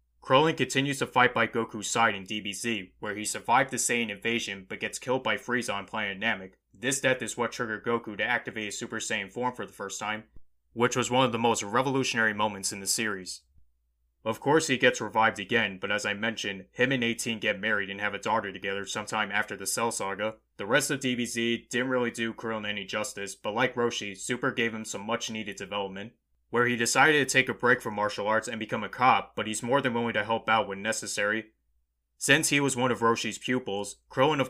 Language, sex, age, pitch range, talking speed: English, male, 20-39, 100-120 Hz, 225 wpm